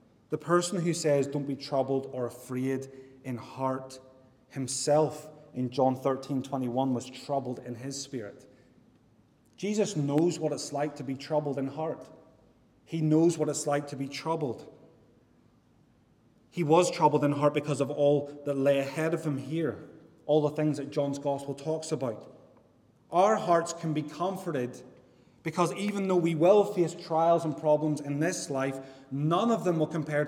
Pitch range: 135-165 Hz